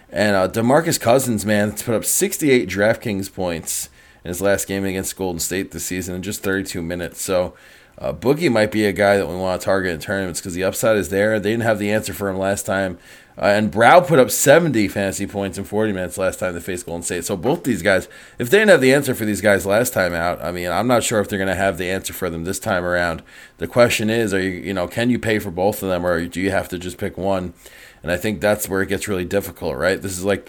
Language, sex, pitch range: English, male, 95-110 Hz